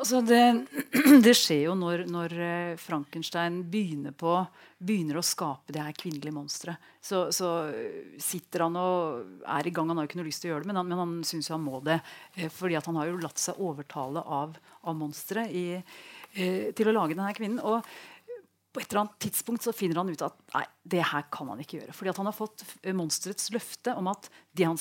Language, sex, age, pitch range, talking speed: English, female, 40-59, 160-190 Hz, 205 wpm